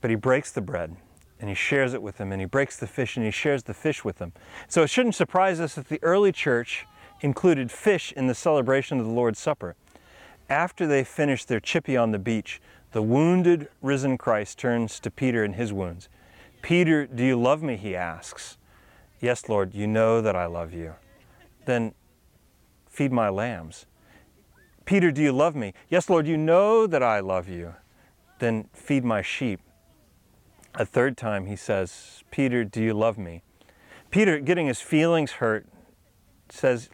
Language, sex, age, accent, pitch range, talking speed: English, male, 30-49, American, 100-140 Hz, 180 wpm